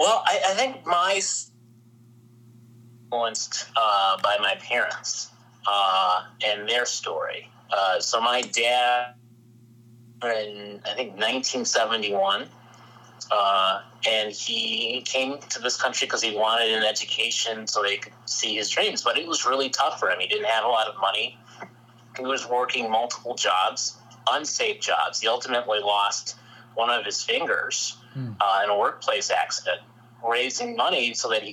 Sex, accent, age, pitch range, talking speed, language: male, American, 30-49, 110-120 Hz, 145 wpm, English